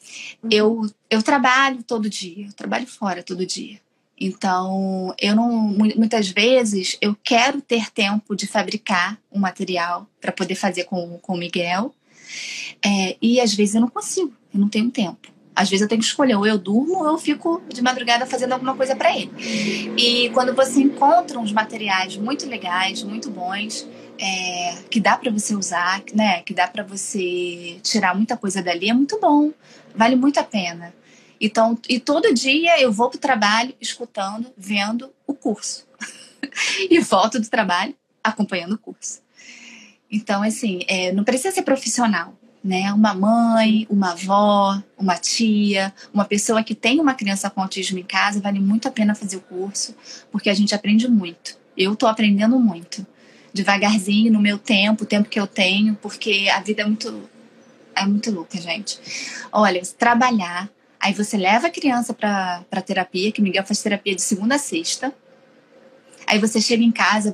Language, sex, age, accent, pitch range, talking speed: Portuguese, female, 20-39, Brazilian, 195-250 Hz, 170 wpm